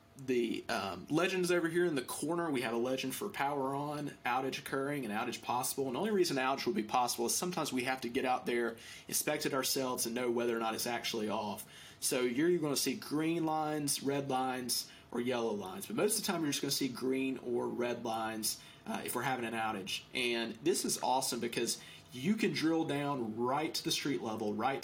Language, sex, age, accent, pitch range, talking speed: English, male, 30-49, American, 120-140 Hz, 225 wpm